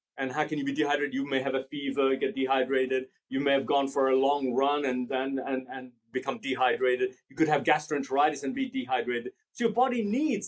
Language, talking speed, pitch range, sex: English, 210 wpm, 145-200 Hz, male